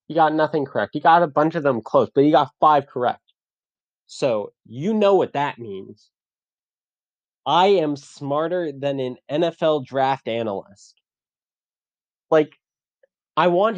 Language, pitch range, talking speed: English, 115-160 Hz, 145 wpm